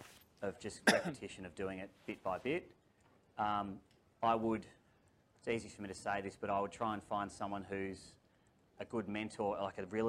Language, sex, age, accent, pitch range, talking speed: English, male, 30-49, Australian, 95-105 Hz, 195 wpm